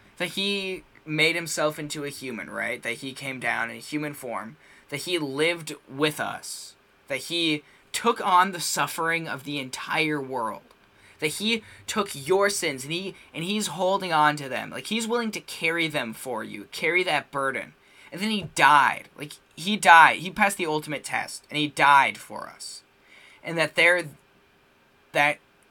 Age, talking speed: 10-29, 175 wpm